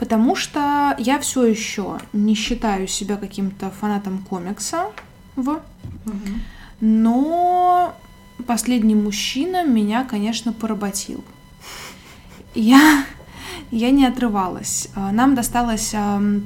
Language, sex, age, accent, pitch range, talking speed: Russian, female, 20-39, native, 200-240 Hz, 85 wpm